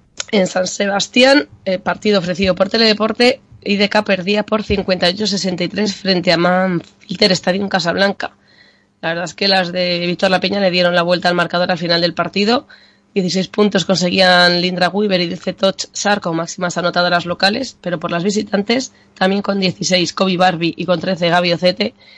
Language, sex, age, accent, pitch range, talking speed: Spanish, female, 20-39, Spanish, 175-200 Hz, 170 wpm